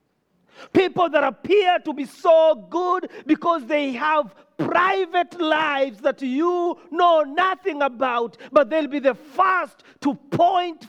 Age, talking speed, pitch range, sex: 40-59, 130 wpm, 205-315 Hz, male